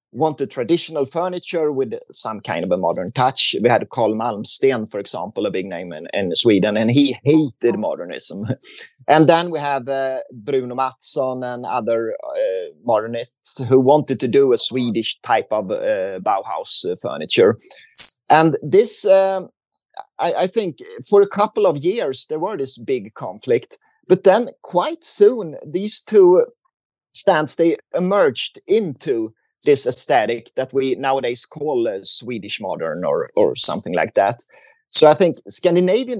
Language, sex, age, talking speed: Italian, male, 30-49, 155 wpm